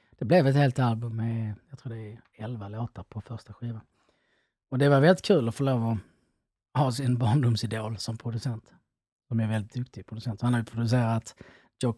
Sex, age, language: male, 30-49, Swedish